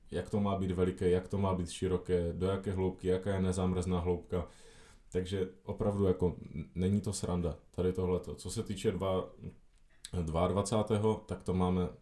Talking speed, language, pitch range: 160 wpm, Czech, 90-105 Hz